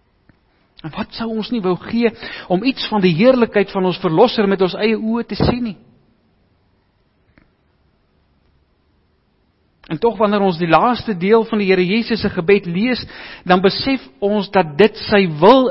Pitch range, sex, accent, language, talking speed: 150-205 Hz, male, Dutch, English, 160 wpm